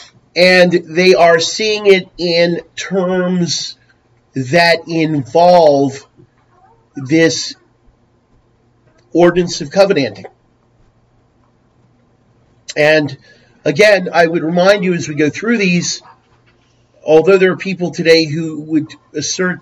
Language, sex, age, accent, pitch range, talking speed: English, male, 40-59, American, 120-170 Hz, 100 wpm